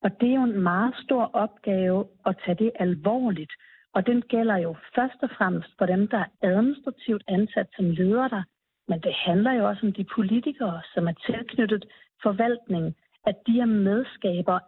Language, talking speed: Danish, 180 wpm